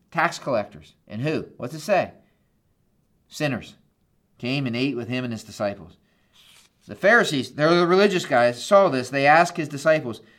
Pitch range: 140-215 Hz